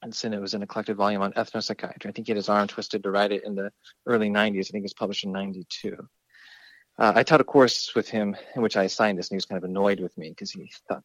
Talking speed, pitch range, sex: 290 wpm, 100-125 Hz, male